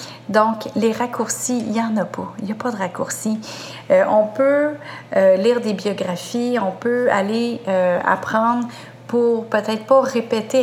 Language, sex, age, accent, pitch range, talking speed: French, female, 40-59, Canadian, 190-230 Hz, 170 wpm